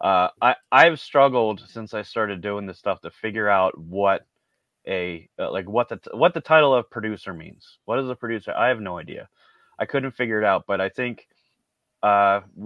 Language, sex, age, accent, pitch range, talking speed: English, male, 30-49, American, 95-115 Hz, 205 wpm